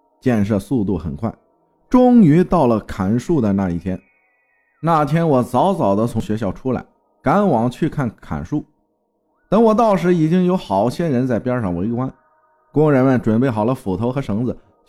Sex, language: male, Chinese